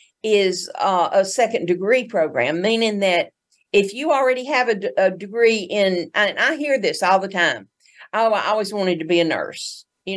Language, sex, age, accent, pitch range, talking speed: English, female, 50-69, American, 175-215 Hz, 190 wpm